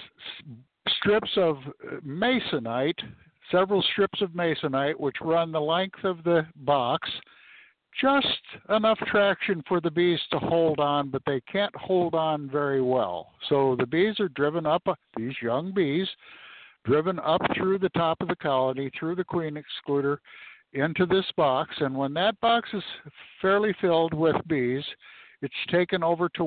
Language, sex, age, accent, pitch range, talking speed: English, male, 60-79, American, 140-190 Hz, 150 wpm